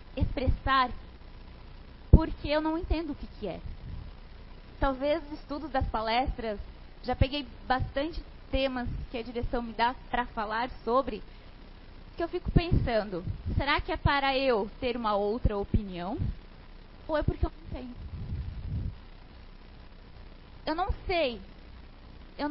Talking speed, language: 130 wpm, Portuguese